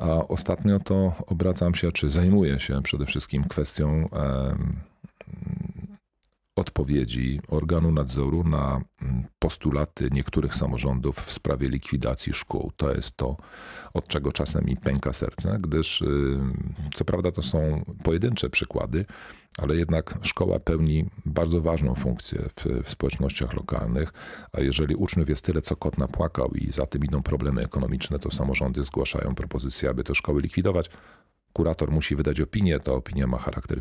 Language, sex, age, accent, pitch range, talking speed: Polish, male, 40-59, native, 70-90 Hz, 140 wpm